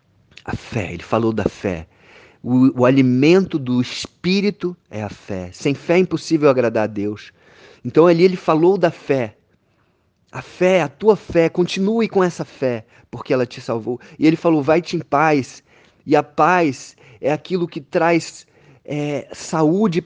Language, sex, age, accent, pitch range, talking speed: Portuguese, male, 20-39, Brazilian, 105-165 Hz, 160 wpm